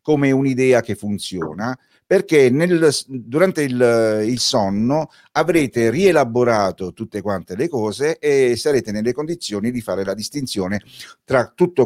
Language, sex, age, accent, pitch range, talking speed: Italian, male, 50-69, native, 95-135 Hz, 130 wpm